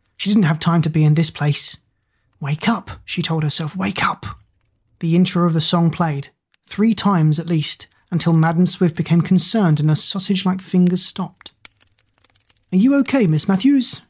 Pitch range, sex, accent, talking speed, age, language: 145-180 Hz, male, British, 175 wpm, 30-49, English